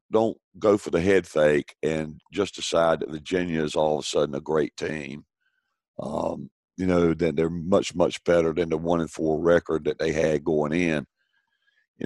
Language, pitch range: English, 80-95 Hz